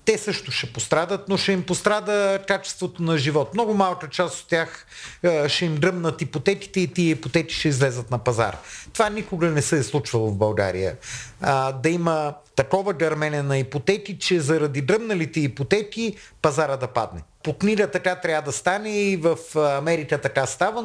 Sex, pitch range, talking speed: male, 145-200 Hz, 175 wpm